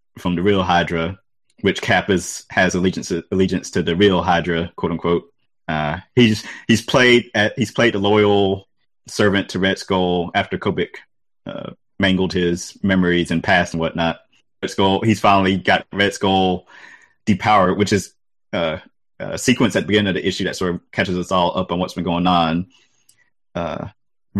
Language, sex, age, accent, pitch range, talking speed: English, male, 20-39, American, 85-100 Hz, 175 wpm